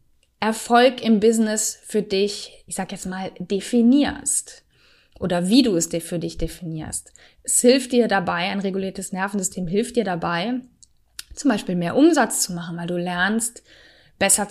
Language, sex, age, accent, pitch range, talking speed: German, female, 20-39, German, 185-235 Hz, 155 wpm